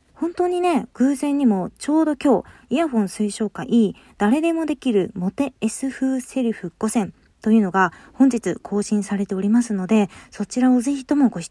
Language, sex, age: Japanese, female, 20-39